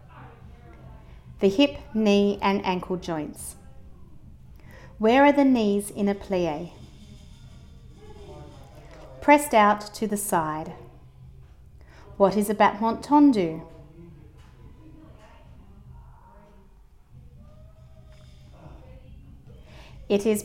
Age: 30-49